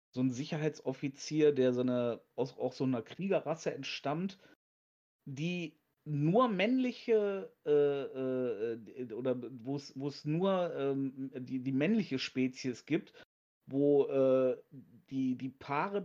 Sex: male